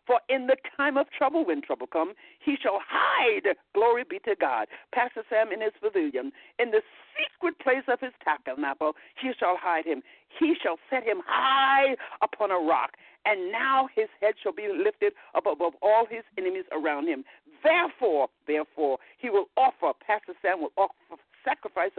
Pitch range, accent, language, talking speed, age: 210-330 Hz, American, English, 175 wpm, 60-79